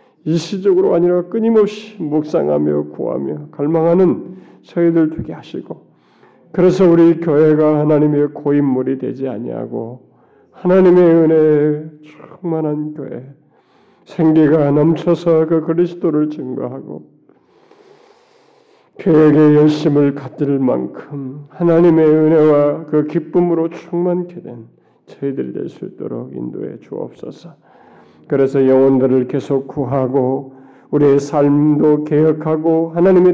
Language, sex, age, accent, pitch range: Korean, male, 40-59, native, 140-175 Hz